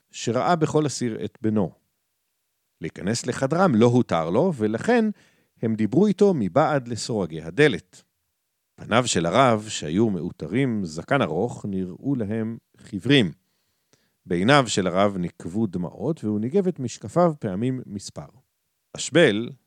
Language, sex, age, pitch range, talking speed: Hebrew, male, 50-69, 105-165 Hz, 120 wpm